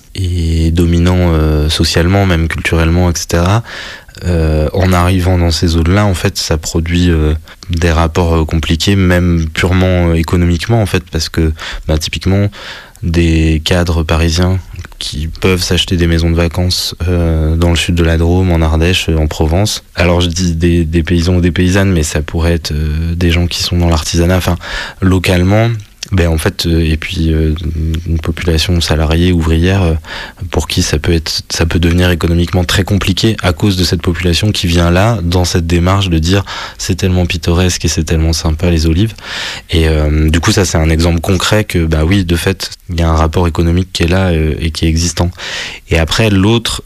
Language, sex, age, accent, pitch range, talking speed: French, male, 20-39, French, 80-95 Hz, 195 wpm